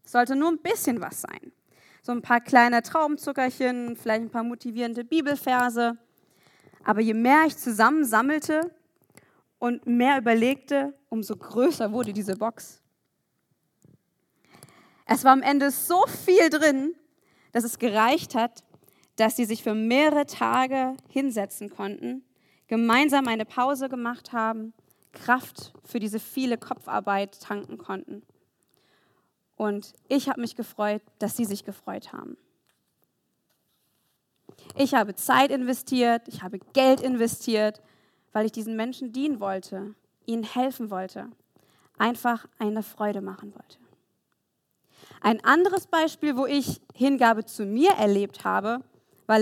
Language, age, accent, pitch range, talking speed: German, 20-39, German, 215-270 Hz, 125 wpm